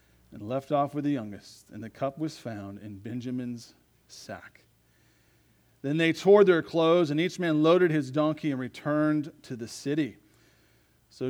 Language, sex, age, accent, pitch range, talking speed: English, male, 40-59, American, 115-155 Hz, 165 wpm